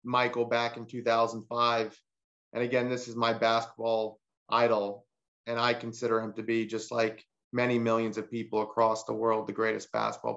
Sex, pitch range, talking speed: male, 115-120 Hz, 170 wpm